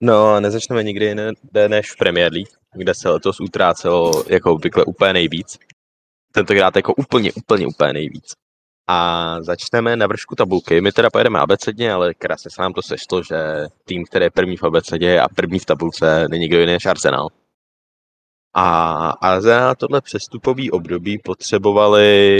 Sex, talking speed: male, 165 wpm